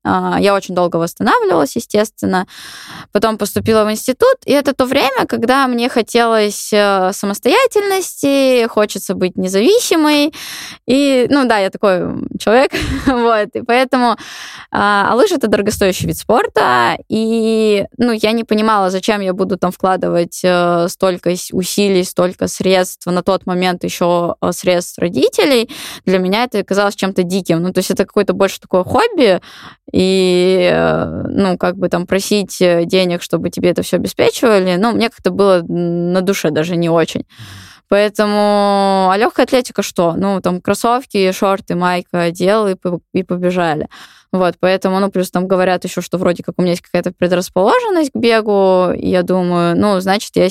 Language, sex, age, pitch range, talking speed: Russian, female, 20-39, 180-220 Hz, 150 wpm